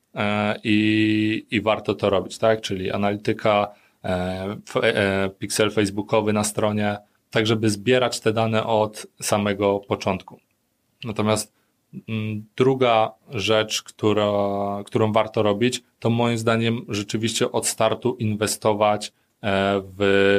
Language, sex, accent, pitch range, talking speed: Polish, male, native, 100-110 Hz, 110 wpm